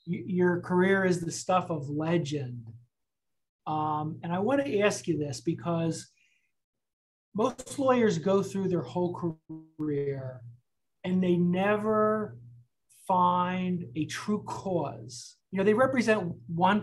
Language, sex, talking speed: English, male, 125 wpm